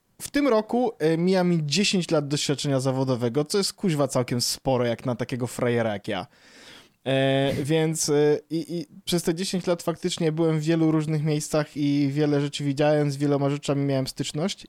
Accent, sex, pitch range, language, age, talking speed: native, male, 140-175 Hz, Polish, 20-39, 165 wpm